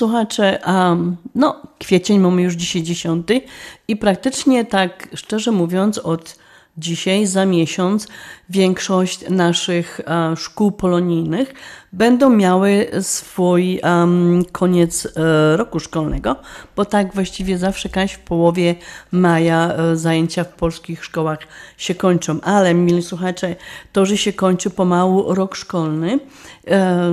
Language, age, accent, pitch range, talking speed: Polish, 40-59, native, 170-190 Hz, 125 wpm